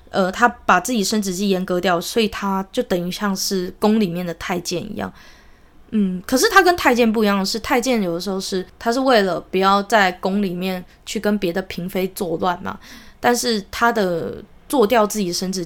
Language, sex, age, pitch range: Chinese, female, 20-39, 185-230 Hz